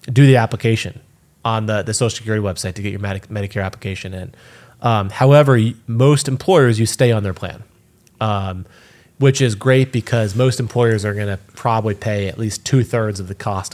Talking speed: 185 wpm